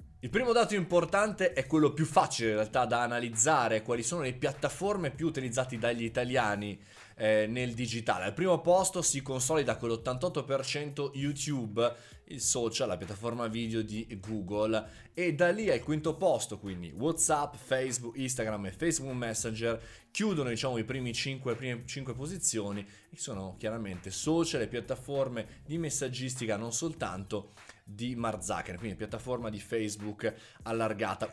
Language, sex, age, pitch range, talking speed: Italian, male, 20-39, 110-145 Hz, 145 wpm